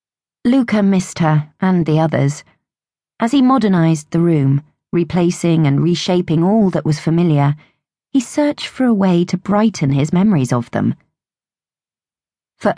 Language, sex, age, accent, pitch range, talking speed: English, female, 40-59, British, 150-195 Hz, 140 wpm